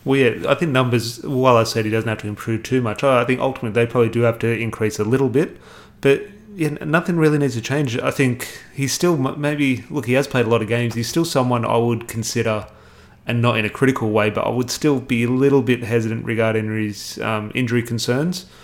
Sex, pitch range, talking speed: male, 110-130 Hz, 235 wpm